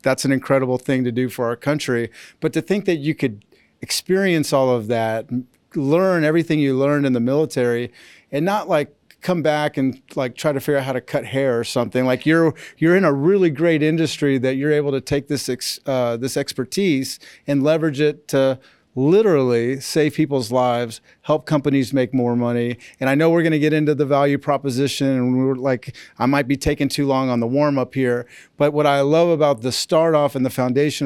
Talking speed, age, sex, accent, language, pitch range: 205 wpm, 40-59, male, American, English, 130-150 Hz